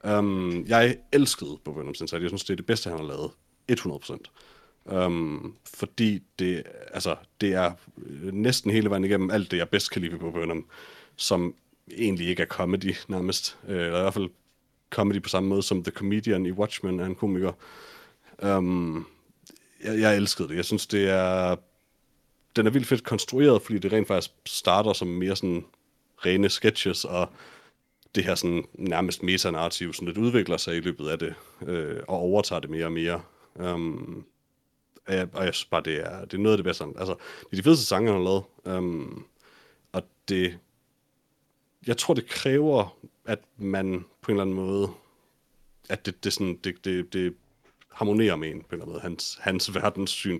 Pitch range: 90-105 Hz